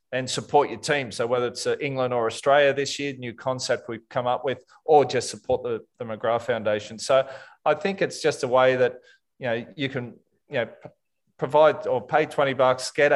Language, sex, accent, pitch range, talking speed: English, male, Australian, 120-140 Hz, 210 wpm